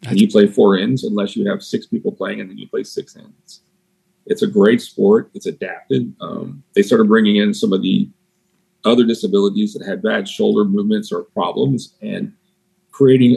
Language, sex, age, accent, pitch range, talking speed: English, male, 40-59, American, 185-220 Hz, 190 wpm